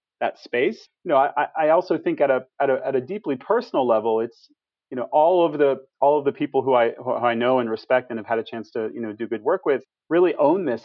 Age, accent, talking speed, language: 30-49, American, 270 wpm, English